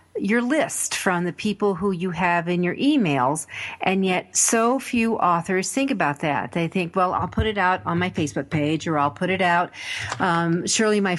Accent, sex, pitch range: American, female, 160-195 Hz